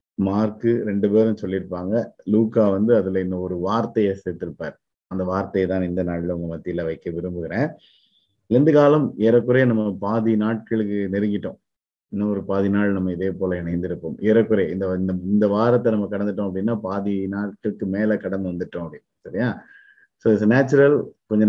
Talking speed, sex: 145 wpm, male